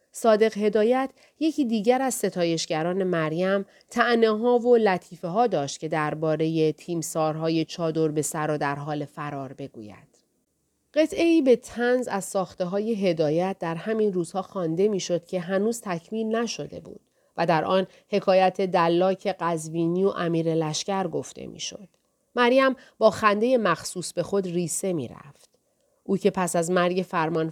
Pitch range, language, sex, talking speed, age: 165-220 Hz, Persian, female, 150 wpm, 40-59